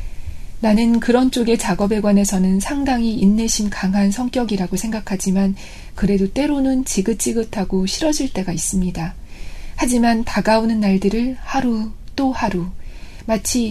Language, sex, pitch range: Korean, female, 190-235 Hz